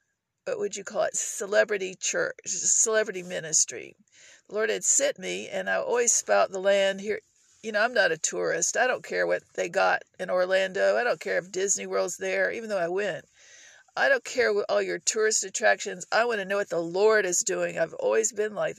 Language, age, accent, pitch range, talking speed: English, 50-69, American, 185-220 Hz, 215 wpm